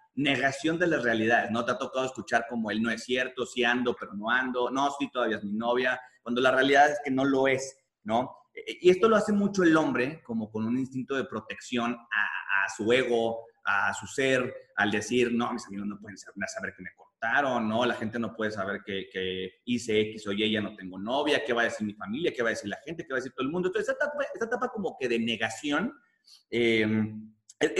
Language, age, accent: Spanish, 30-49, Mexican